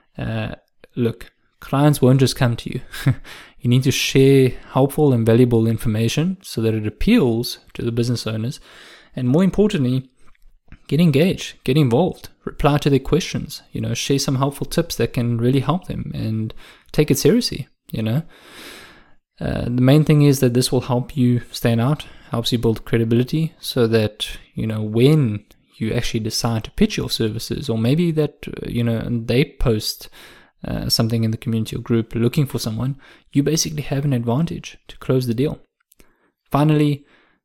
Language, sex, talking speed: English, male, 170 wpm